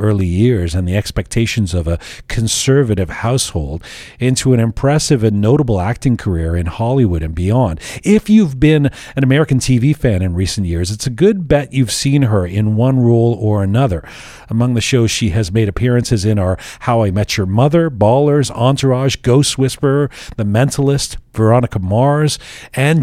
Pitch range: 100-135 Hz